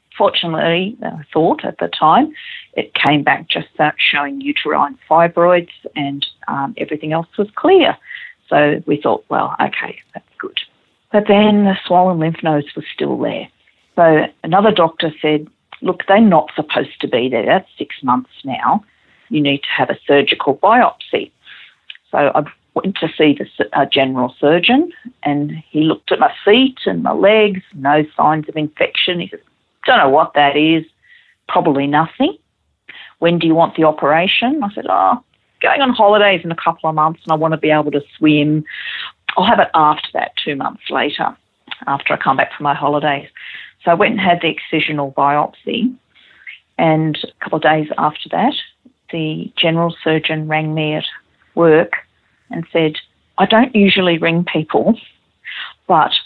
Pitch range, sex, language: 155-205 Hz, female, English